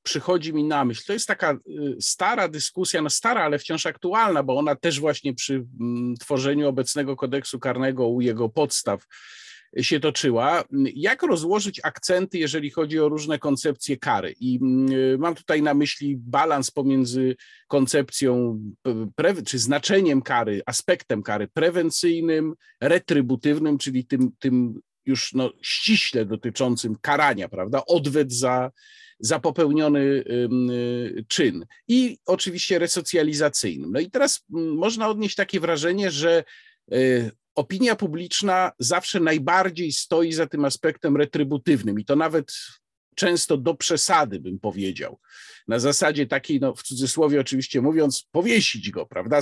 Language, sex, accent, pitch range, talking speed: Polish, male, native, 130-175 Hz, 125 wpm